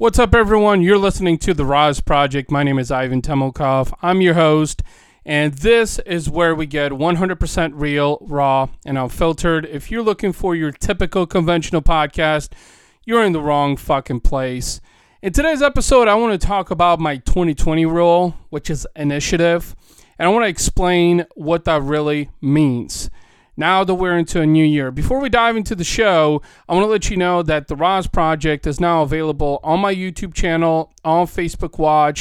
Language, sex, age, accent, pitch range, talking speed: English, male, 30-49, American, 145-185 Hz, 185 wpm